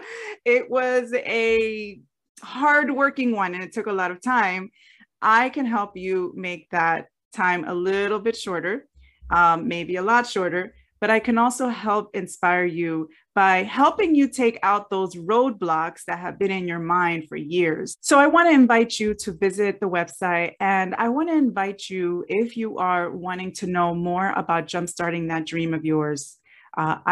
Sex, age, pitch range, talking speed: female, 30-49, 175-215 Hz, 175 wpm